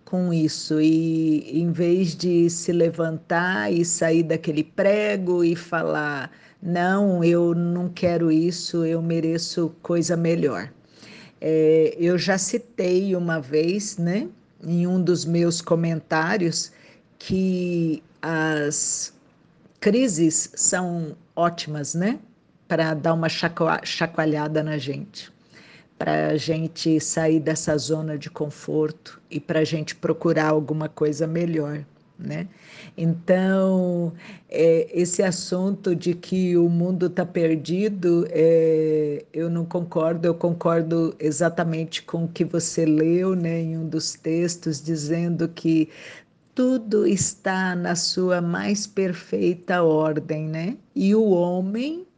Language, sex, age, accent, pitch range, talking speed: Portuguese, female, 50-69, Brazilian, 160-180 Hz, 115 wpm